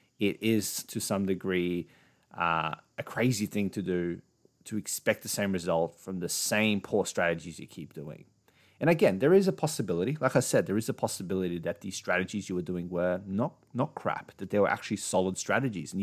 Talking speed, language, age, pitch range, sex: 200 wpm, English, 30-49, 95-115 Hz, male